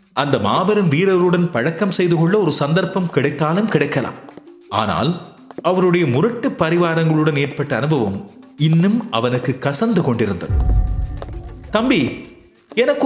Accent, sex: native, male